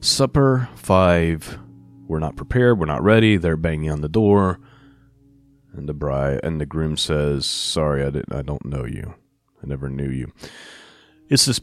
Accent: American